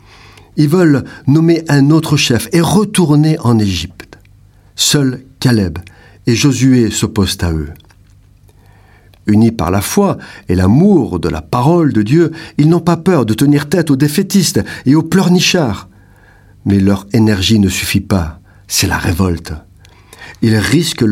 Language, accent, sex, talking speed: French, French, male, 145 wpm